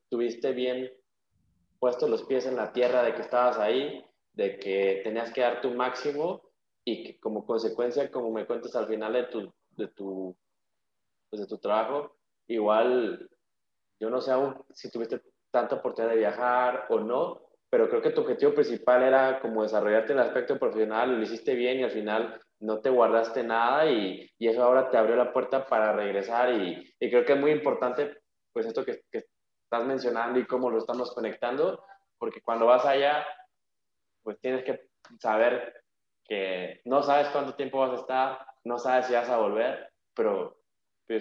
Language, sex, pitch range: Spanish, male, 115-135 Hz